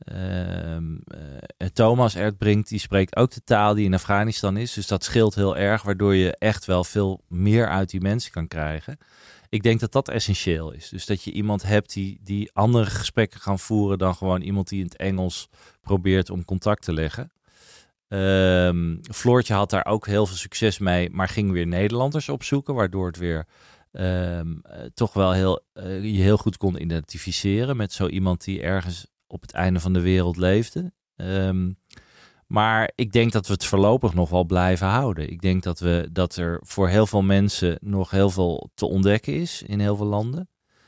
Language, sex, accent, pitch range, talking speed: Dutch, male, Dutch, 90-110 Hz, 180 wpm